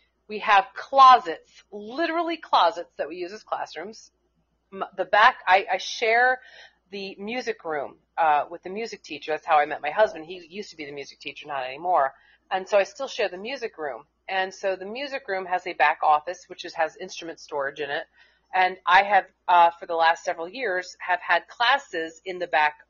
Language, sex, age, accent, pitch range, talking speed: English, female, 30-49, American, 165-210 Hz, 200 wpm